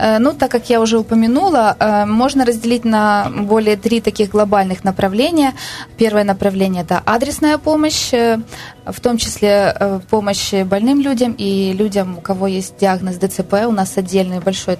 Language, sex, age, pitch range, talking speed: Ukrainian, female, 20-39, 195-230 Hz, 145 wpm